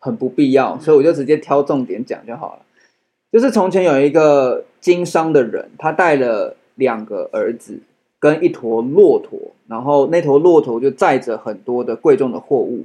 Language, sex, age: Chinese, male, 20-39